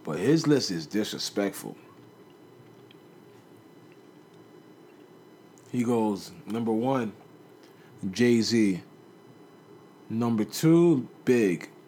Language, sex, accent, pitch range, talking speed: English, male, American, 110-145 Hz, 70 wpm